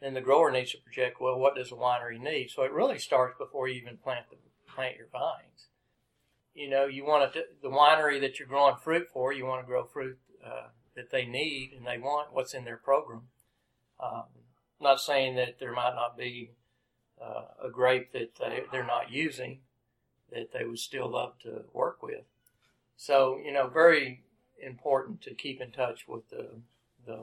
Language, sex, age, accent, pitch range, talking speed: English, male, 50-69, American, 120-135 Hz, 200 wpm